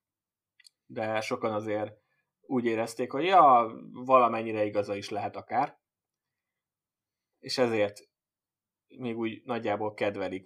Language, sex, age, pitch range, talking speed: Hungarian, male, 20-39, 105-130 Hz, 105 wpm